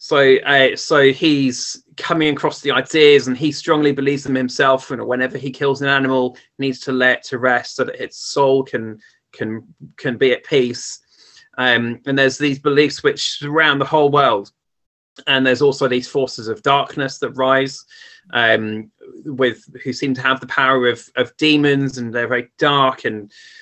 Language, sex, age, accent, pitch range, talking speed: English, male, 30-49, British, 130-155 Hz, 180 wpm